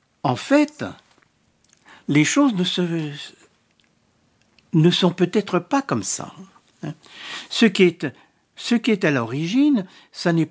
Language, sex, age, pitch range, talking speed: French, male, 60-79, 140-220 Hz, 110 wpm